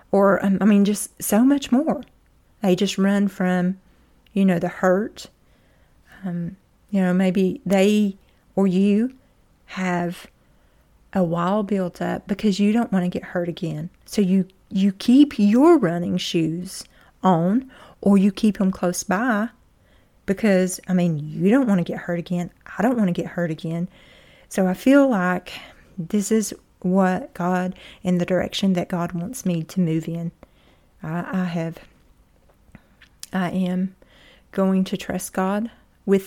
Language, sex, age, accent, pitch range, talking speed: English, female, 40-59, American, 180-215 Hz, 155 wpm